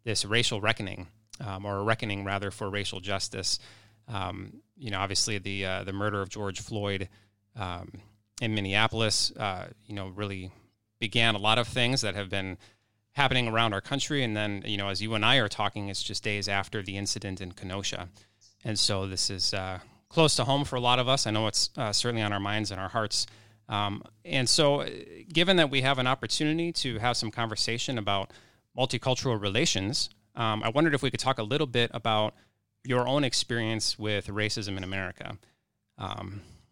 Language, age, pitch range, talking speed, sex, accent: English, 30-49, 100-125 Hz, 195 wpm, male, American